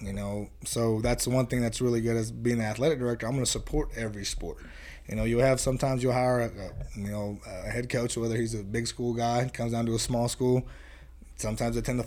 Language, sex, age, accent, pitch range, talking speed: English, male, 20-39, American, 110-125 Hz, 250 wpm